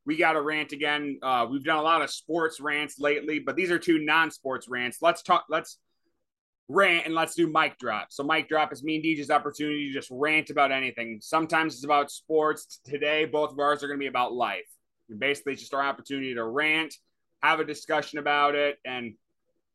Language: English